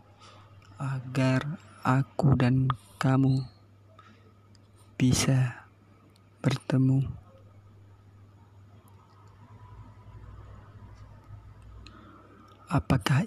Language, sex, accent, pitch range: Indonesian, male, native, 105-130 Hz